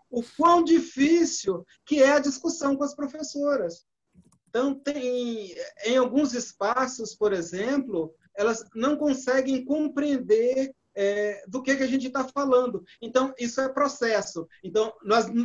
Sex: male